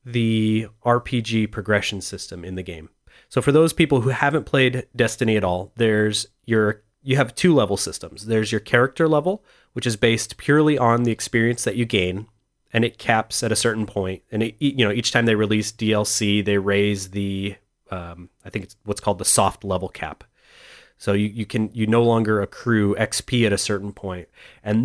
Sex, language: male, English